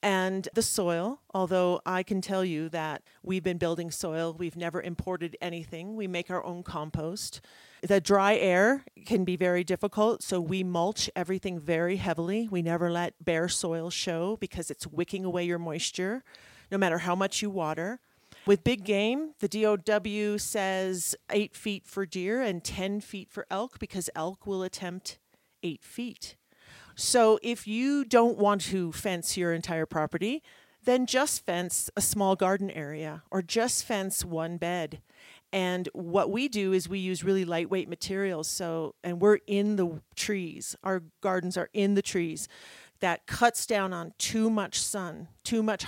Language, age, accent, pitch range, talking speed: English, 40-59, American, 170-205 Hz, 165 wpm